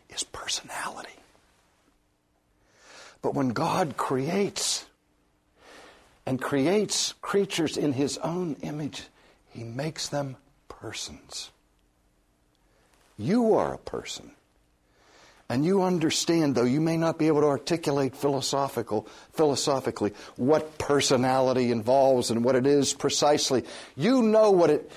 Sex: male